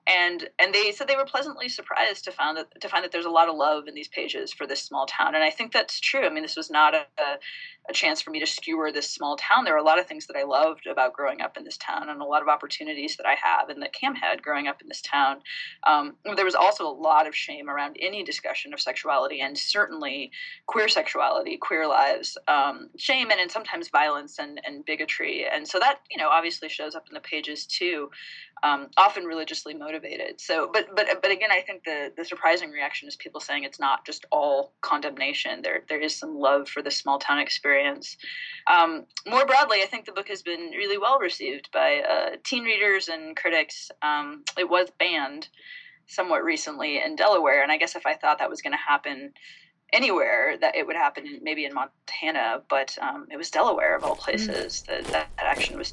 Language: English